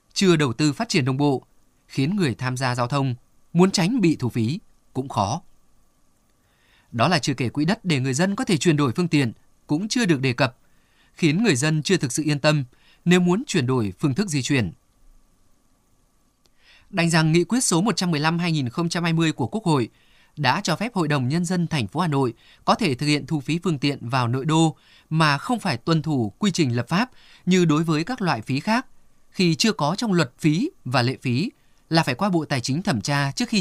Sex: male